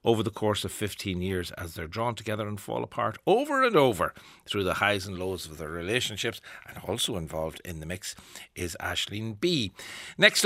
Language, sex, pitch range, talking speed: English, male, 95-120 Hz, 195 wpm